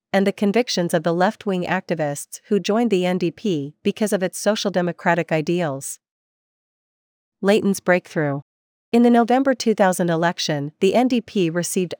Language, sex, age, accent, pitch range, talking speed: English, female, 40-59, American, 160-200 Hz, 135 wpm